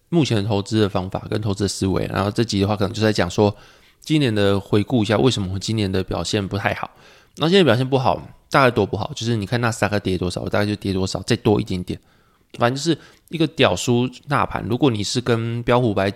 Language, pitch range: Chinese, 100-125 Hz